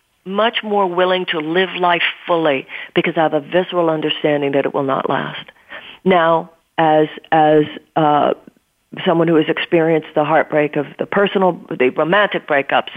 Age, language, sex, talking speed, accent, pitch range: 50-69, English, female, 155 wpm, American, 160-210 Hz